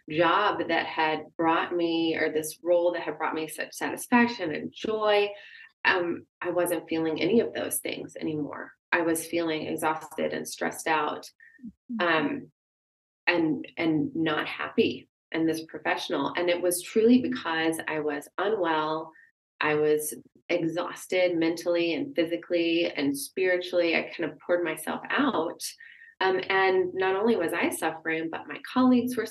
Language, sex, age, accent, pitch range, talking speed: English, female, 20-39, American, 160-205 Hz, 150 wpm